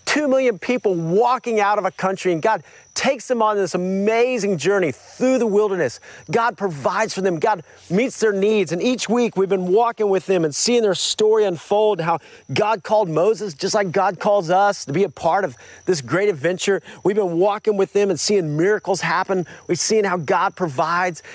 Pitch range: 175-225 Hz